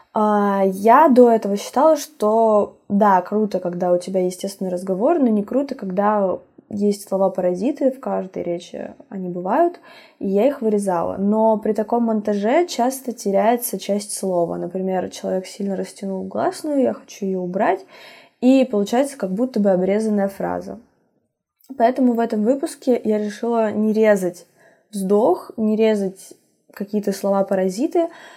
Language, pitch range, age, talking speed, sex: Russian, 190-235 Hz, 20-39, 135 wpm, female